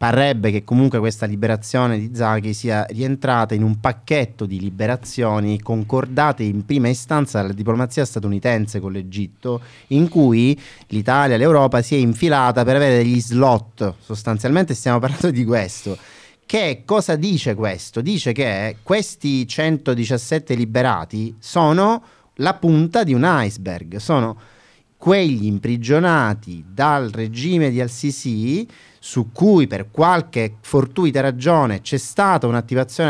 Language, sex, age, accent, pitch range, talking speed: Italian, male, 30-49, native, 110-145 Hz, 130 wpm